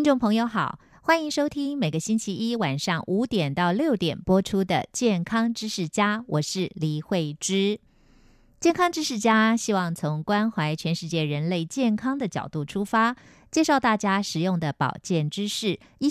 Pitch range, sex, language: 165-225 Hz, female, Chinese